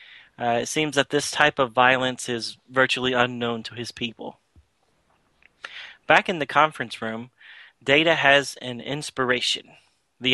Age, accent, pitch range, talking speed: 30-49, American, 120-140 Hz, 140 wpm